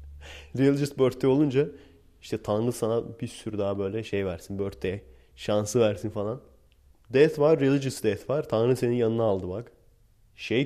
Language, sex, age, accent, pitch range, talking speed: Turkish, male, 30-49, native, 100-120 Hz, 150 wpm